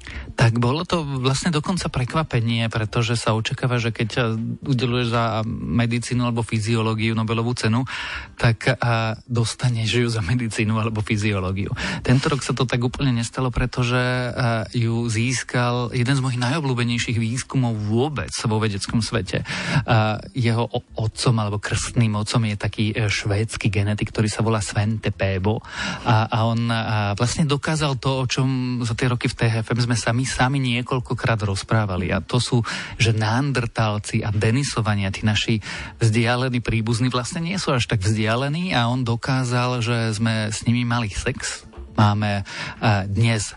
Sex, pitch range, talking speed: male, 110-125 Hz, 140 wpm